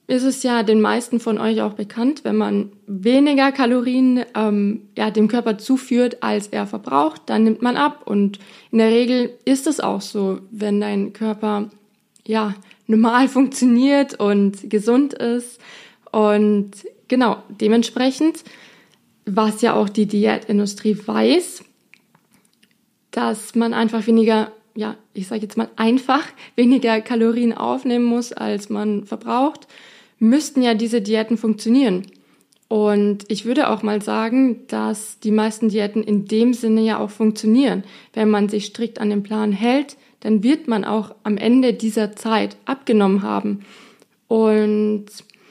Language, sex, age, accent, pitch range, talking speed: German, female, 20-39, German, 215-245 Hz, 140 wpm